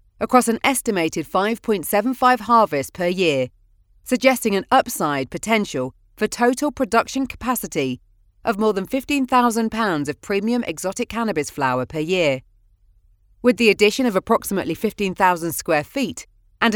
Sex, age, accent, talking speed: female, 30-49, British, 130 wpm